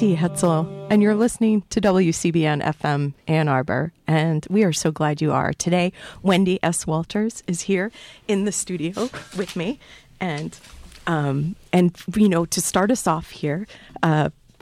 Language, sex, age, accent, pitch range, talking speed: English, female, 40-59, American, 150-185 Hz, 160 wpm